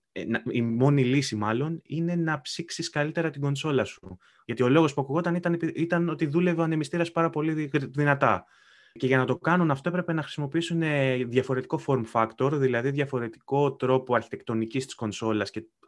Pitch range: 125-160 Hz